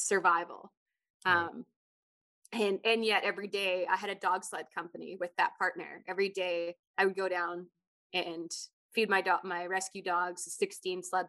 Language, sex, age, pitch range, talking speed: English, female, 20-39, 180-210 Hz, 165 wpm